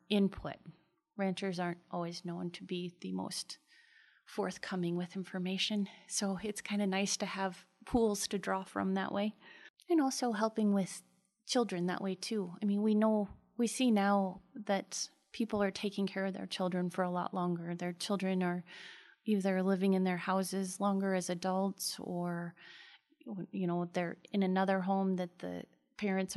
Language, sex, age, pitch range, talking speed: English, female, 30-49, 180-200 Hz, 165 wpm